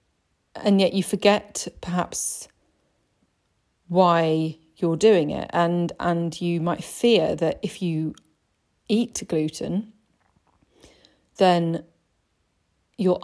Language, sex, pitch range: English, female, 165-195 Hz